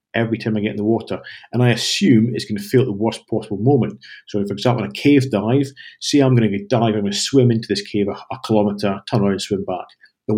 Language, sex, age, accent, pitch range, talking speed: English, male, 40-59, British, 105-130 Hz, 275 wpm